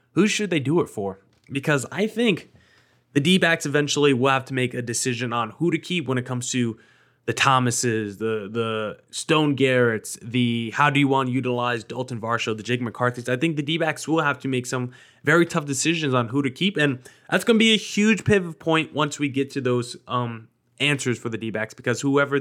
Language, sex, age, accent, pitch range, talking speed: English, male, 20-39, American, 120-155 Hz, 215 wpm